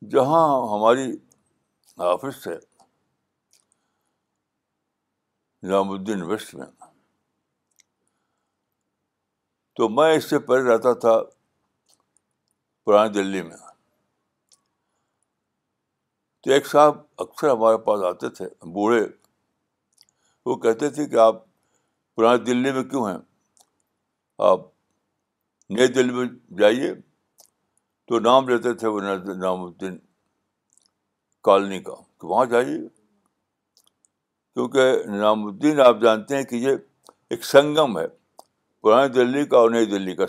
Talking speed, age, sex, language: 100 wpm, 60-79, male, Urdu